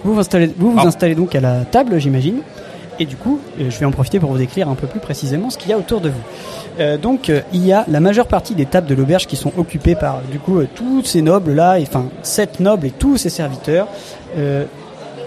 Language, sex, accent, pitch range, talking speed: French, male, French, 150-215 Hz, 250 wpm